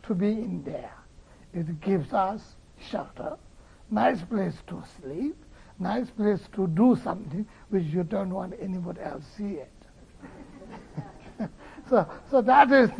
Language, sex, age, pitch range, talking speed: English, male, 60-79, 195-285 Hz, 135 wpm